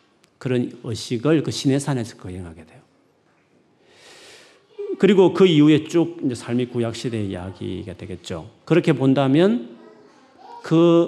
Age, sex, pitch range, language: 40-59, male, 115-155 Hz, Korean